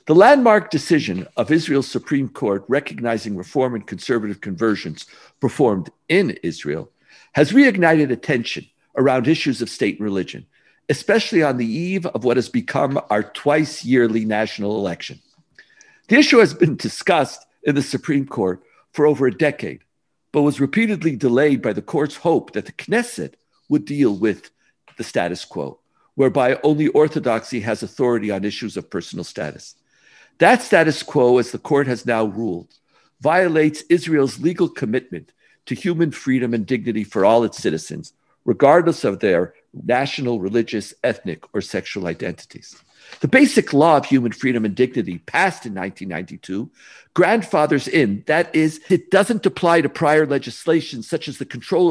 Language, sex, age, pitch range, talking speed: English, male, 50-69, 120-165 Hz, 155 wpm